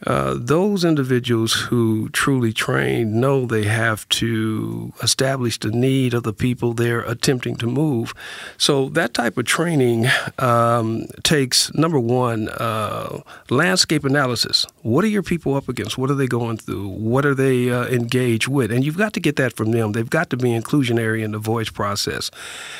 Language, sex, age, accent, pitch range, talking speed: English, male, 50-69, American, 115-145 Hz, 175 wpm